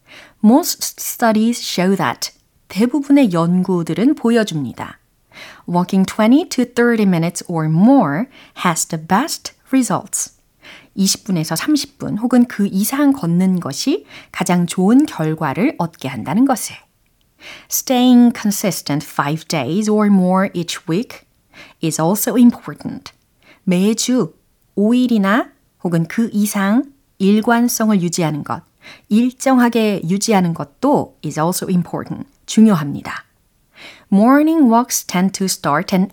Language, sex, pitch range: Korean, female, 170-250 Hz